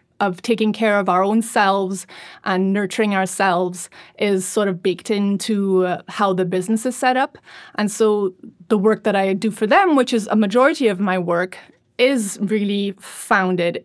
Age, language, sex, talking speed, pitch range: 20-39, English, female, 180 wpm, 185-220 Hz